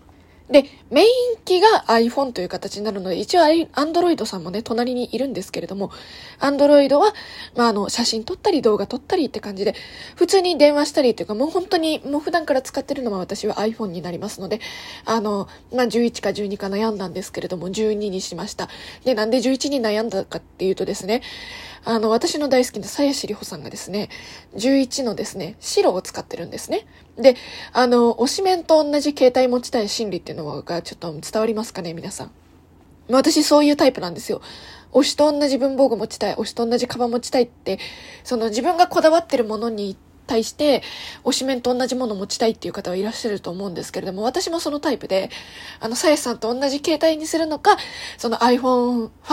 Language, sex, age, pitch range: Japanese, female, 20-39, 200-285 Hz